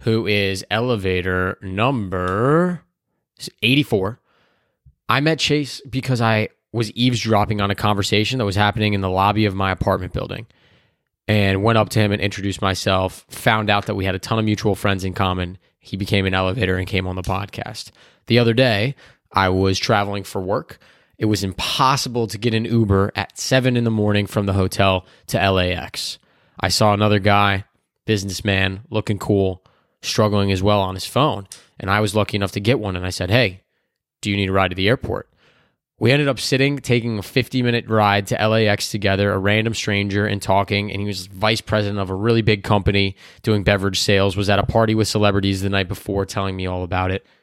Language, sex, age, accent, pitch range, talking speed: English, male, 20-39, American, 95-115 Hz, 195 wpm